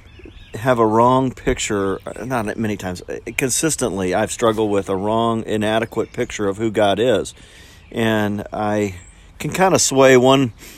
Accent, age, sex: American, 50-69, male